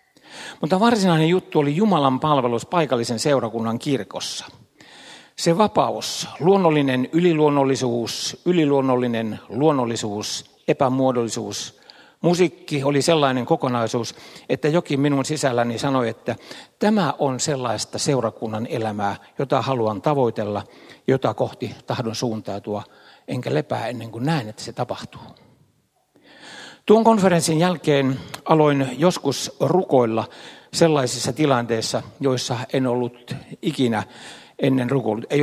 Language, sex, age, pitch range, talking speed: Finnish, male, 60-79, 115-155 Hz, 105 wpm